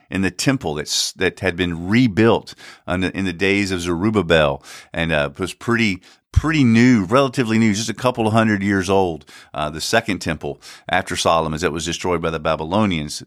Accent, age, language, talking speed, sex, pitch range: American, 50-69, English, 190 wpm, male, 90-120 Hz